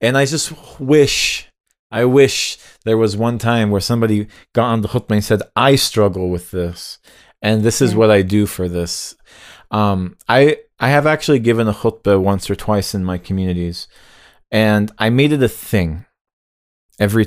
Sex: male